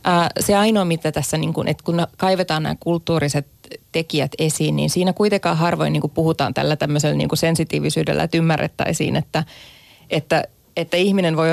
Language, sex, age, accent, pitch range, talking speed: Finnish, female, 20-39, native, 155-185 Hz, 135 wpm